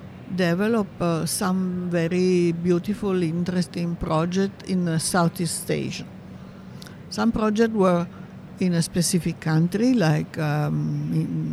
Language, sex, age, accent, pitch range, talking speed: English, female, 60-79, Italian, 160-185 Hz, 110 wpm